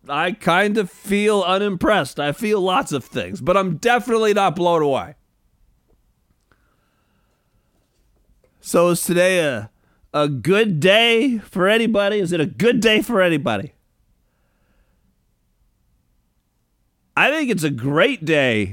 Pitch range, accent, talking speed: 165-225 Hz, American, 120 wpm